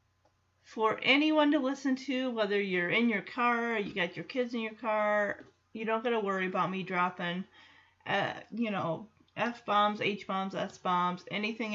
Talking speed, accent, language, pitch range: 165 wpm, American, English, 175-225 Hz